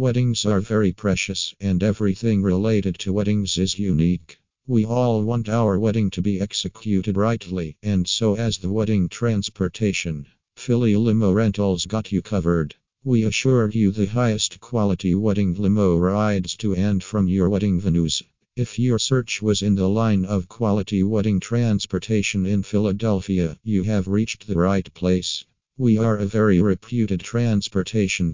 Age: 50-69